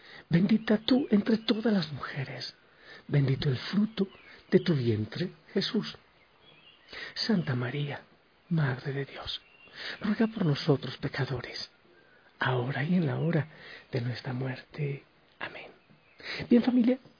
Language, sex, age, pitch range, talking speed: Spanish, male, 50-69, 135-185 Hz, 115 wpm